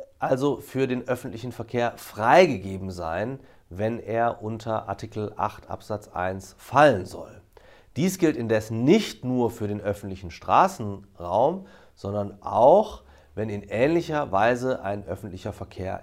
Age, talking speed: 40-59, 125 wpm